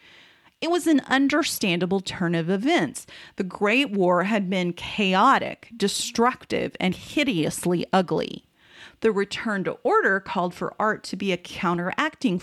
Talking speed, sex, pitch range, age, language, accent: 135 wpm, female, 180-245 Hz, 40-59, English, American